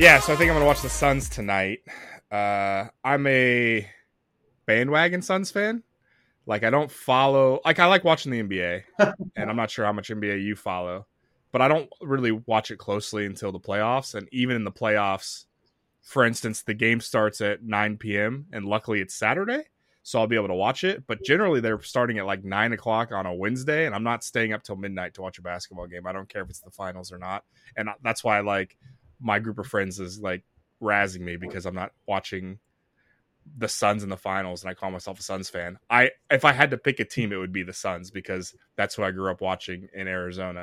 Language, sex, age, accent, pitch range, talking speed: English, male, 20-39, American, 95-125 Hz, 225 wpm